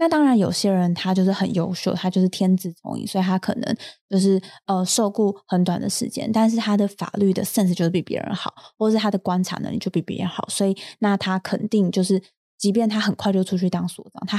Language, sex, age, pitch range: Chinese, female, 20-39, 180-210 Hz